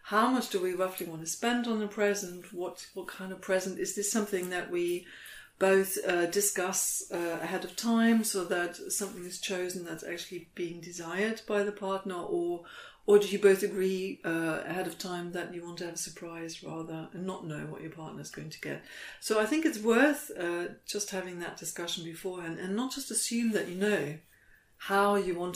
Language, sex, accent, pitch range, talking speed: English, female, British, 175-205 Hz, 210 wpm